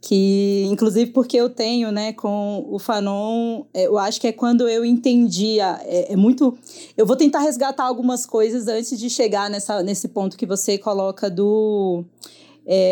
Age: 20-39